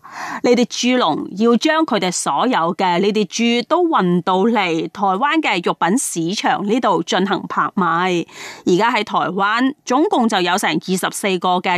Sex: female